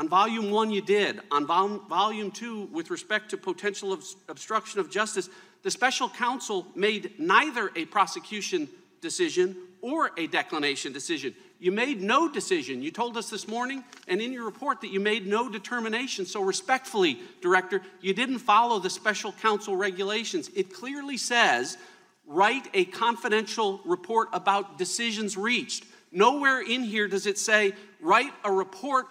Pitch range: 190-270 Hz